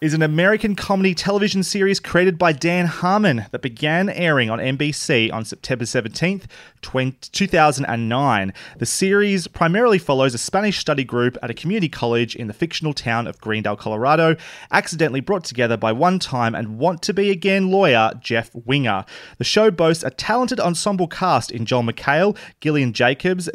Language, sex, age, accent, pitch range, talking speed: English, male, 30-49, Australian, 125-180 Hz, 155 wpm